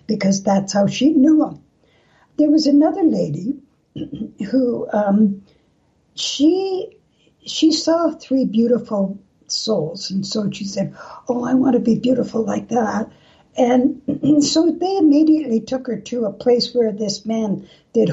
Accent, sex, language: American, female, English